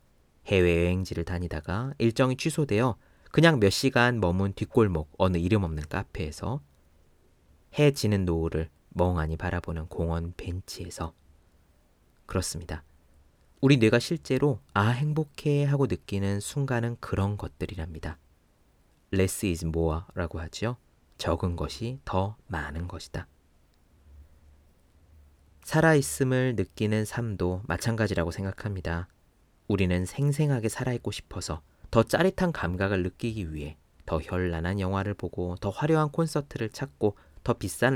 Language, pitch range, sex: Korean, 80-115 Hz, male